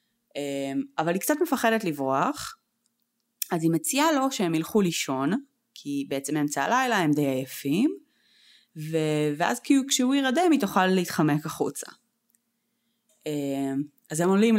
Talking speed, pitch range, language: 125 wpm, 145-230 Hz, Hebrew